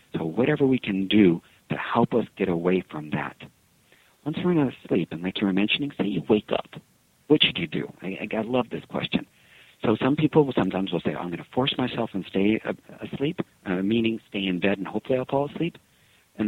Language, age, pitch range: English, 50-69, 95-125 Hz